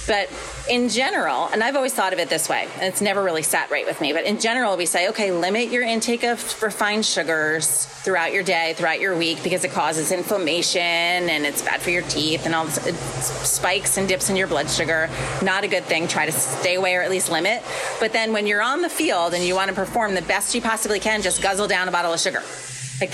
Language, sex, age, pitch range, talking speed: English, female, 30-49, 165-200 Hz, 245 wpm